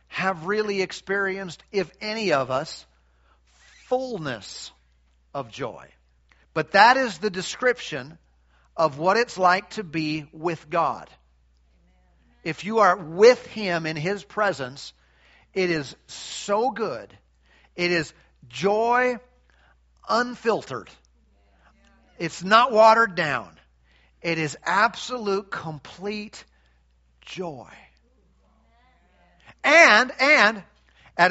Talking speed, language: 100 wpm, English